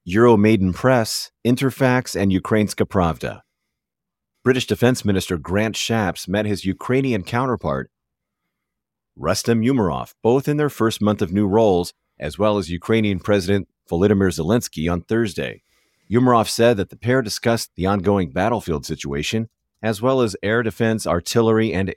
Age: 40-59